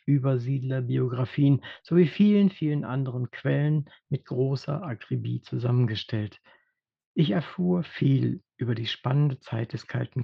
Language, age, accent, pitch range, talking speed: German, 60-79, German, 130-170 Hz, 110 wpm